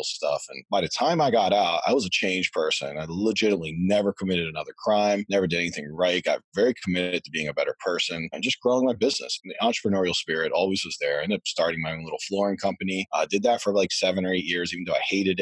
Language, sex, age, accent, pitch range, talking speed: English, male, 30-49, American, 85-100 Hz, 255 wpm